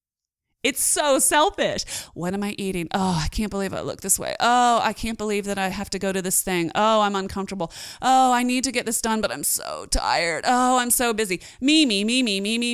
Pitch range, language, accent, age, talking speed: 195-265 Hz, English, American, 30-49, 240 wpm